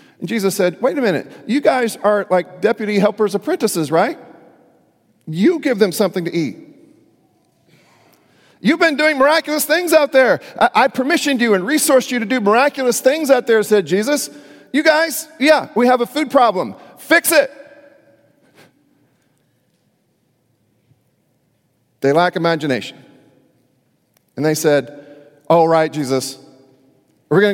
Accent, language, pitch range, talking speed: American, English, 135-220 Hz, 140 wpm